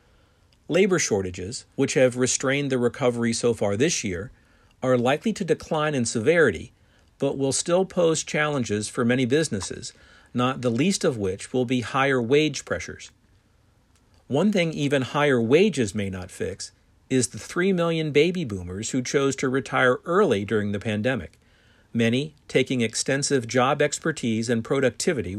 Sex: male